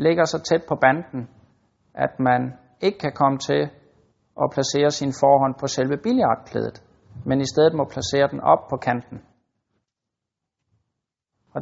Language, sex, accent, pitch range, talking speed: Danish, male, native, 120-160 Hz, 145 wpm